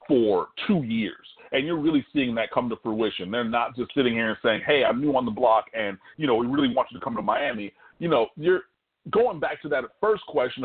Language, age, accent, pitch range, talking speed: English, 40-59, American, 110-165 Hz, 250 wpm